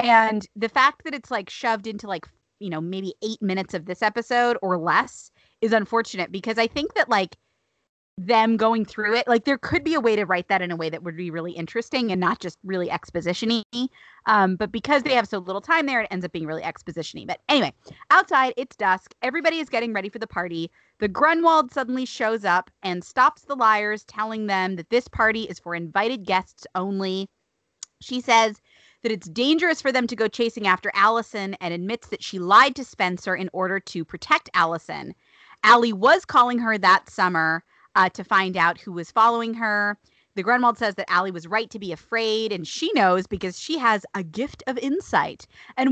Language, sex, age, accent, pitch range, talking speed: English, female, 30-49, American, 185-240 Hz, 205 wpm